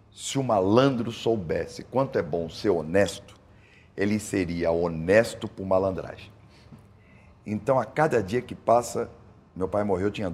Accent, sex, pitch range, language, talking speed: Brazilian, male, 95-115 Hz, Portuguese, 145 wpm